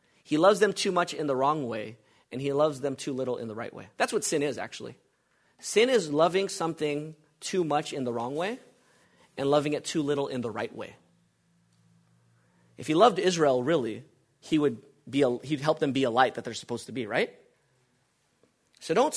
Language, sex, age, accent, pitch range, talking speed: English, male, 30-49, American, 140-190 Hz, 205 wpm